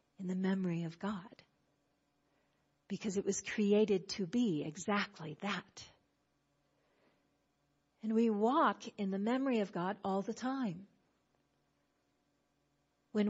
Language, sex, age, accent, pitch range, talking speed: English, female, 50-69, American, 180-230 Hz, 115 wpm